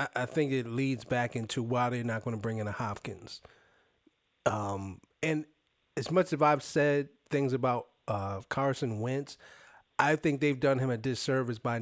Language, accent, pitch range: English, American, 120-160 Hz